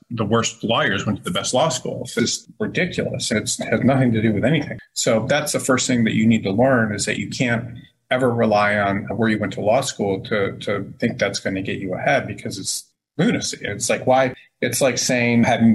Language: English